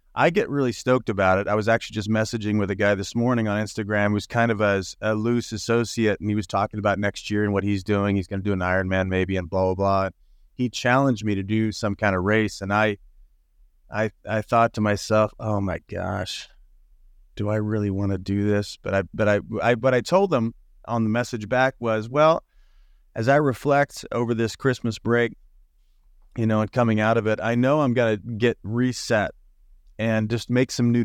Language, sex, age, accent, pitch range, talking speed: English, male, 30-49, American, 100-115 Hz, 220 wpm